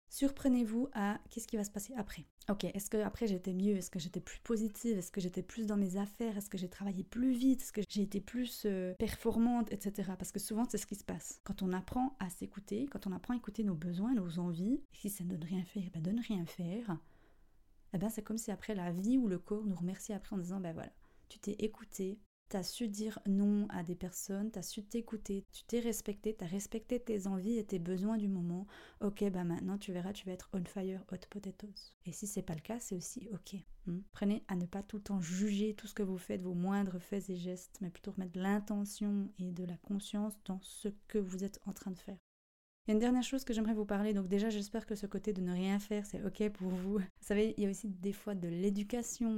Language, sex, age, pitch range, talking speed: French, female, 30-49, 185-215 Hz, 255 wpm